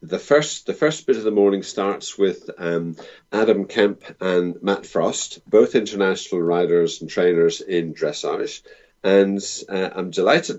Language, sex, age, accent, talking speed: English, male, 50-69, British, 155 wpm